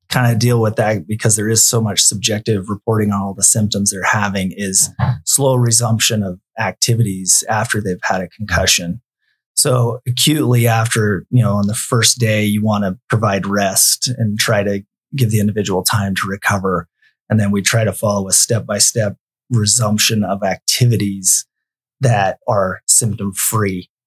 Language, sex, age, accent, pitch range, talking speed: English, male, 30-49, American, 100-120 Hz, 160 wpm